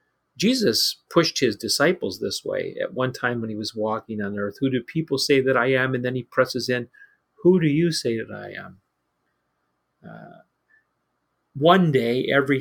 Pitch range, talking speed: 110-140 Hz, 180 wpm